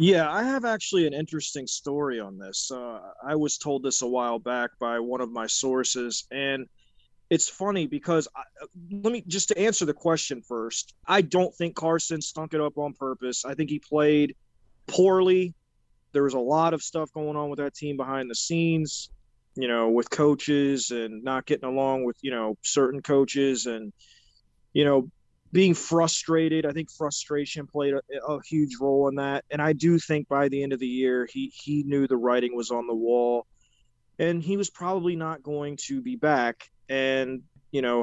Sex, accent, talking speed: male, American, 190 wpm